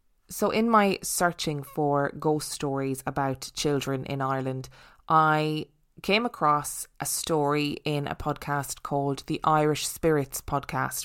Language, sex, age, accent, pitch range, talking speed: English, female, 20-39, Irish, 145-165 Hz, 130 wpm